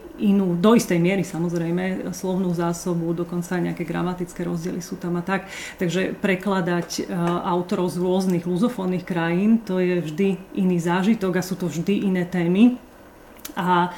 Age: 30-49